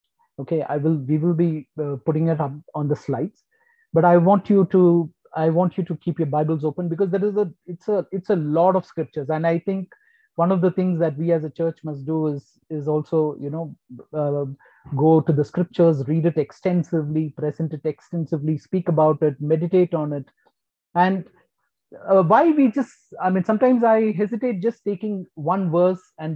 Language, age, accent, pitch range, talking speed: English, 30-49, Indian, 155-190 Hz, 200 wpm